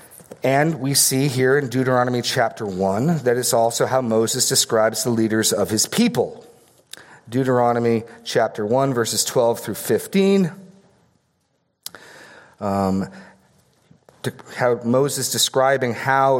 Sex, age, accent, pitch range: male, 40-59, American, 115-145 Hz